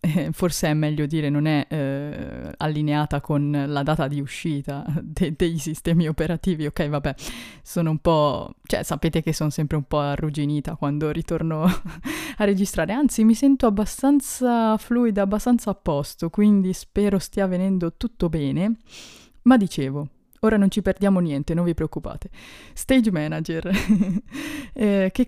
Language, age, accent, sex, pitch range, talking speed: Italian, 20-39, native, female, 155-200 Hz, 145 wpm